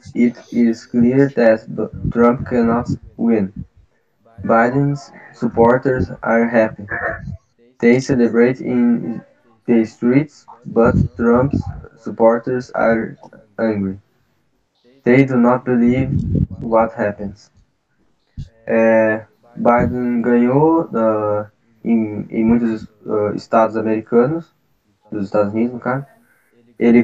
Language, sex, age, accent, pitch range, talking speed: Portuguese, male, 10-29, Brazilian, 110-125 Hz, 85 wpm